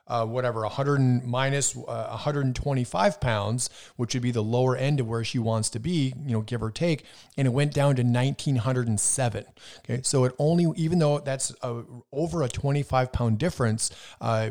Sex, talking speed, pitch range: male, 190 wpm, 115-140 Hz